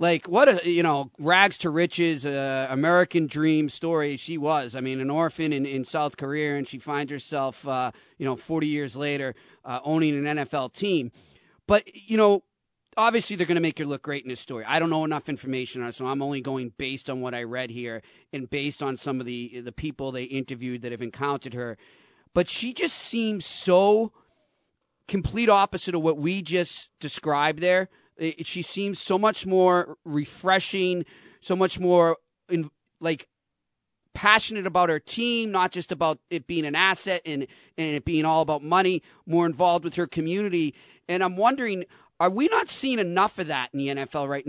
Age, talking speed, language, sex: 40-59, 195 wpm, English, male